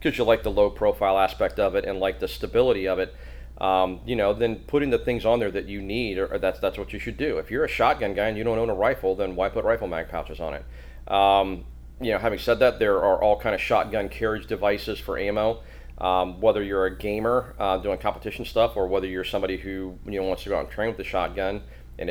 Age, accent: 40-59, American